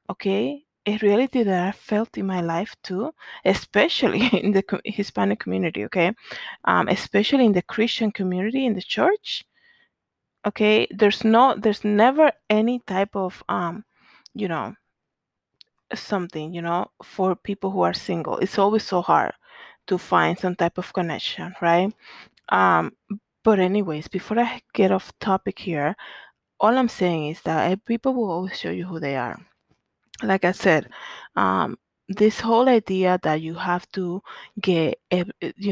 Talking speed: 150 wpm